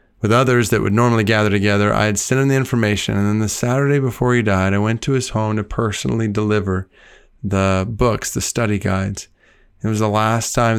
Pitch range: 90-105 Hz